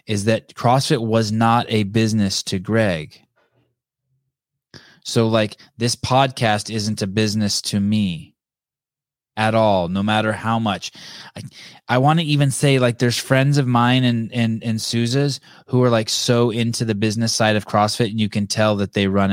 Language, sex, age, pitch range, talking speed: English, male, 20-39, 105-125 Hz, 175 wpm